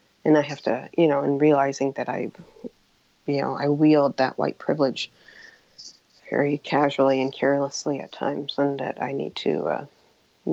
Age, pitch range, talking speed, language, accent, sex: 40-59, 135-150 Hz, 165 wpm, English, American, female